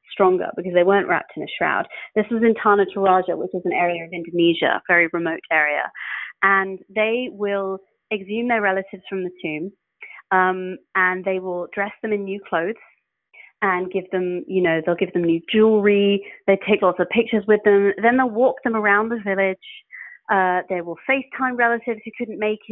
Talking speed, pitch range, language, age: 195 wpm, 180-220 Hz, English, 30-49